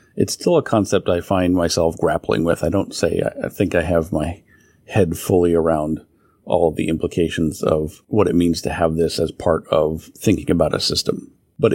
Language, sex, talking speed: English, male, 200 wpm